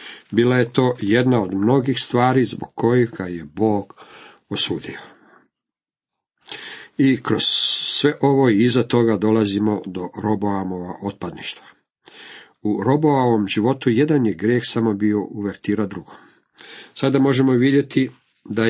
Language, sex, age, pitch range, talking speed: Croatian, male, 50-69, 105-130 Hz, 120 wpm